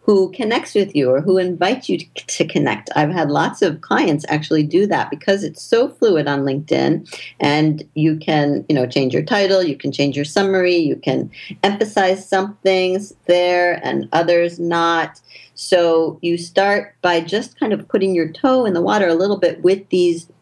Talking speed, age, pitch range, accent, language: 190 wpm, 50-69, 155-205 Hz, American, English